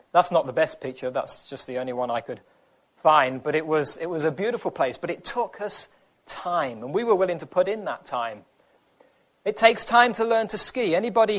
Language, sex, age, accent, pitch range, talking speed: English, male, 30-49, British, 160-225 Hz, 225 wpm